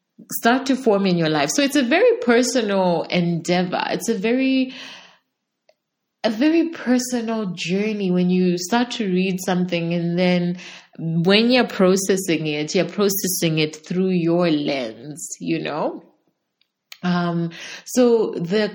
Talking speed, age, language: 135 wpm, 30-49, English